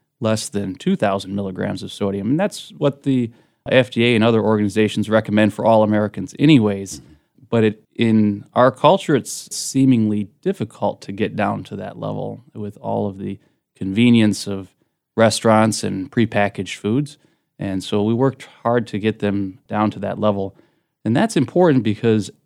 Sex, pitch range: male, 105-135 Hz